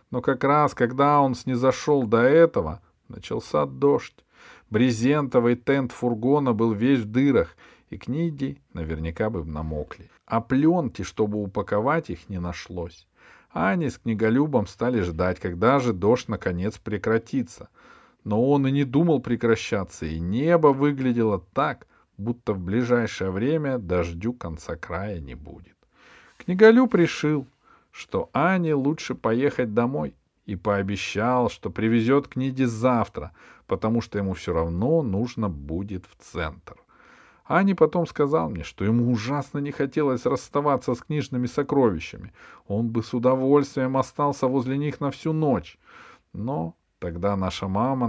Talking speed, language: 135 wpm, Russian